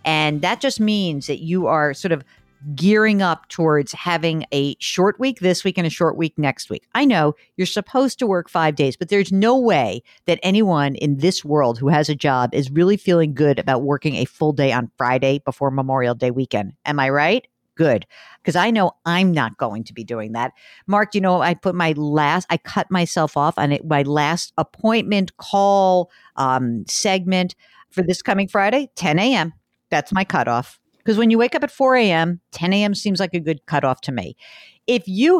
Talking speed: 205 wpm